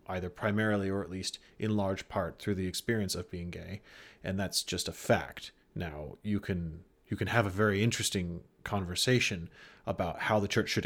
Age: 30-49